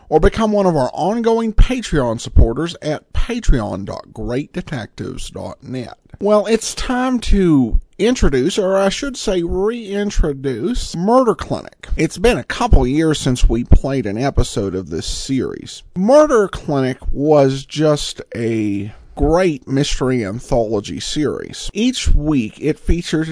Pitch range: 130-205 Hz